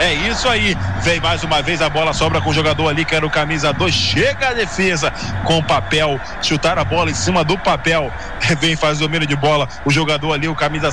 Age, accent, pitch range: 20-39, Brazilian, 135-160 Hz